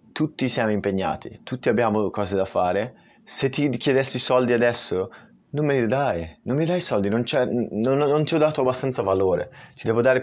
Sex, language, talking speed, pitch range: male, Italian, 200 wpm, 105-135 Hz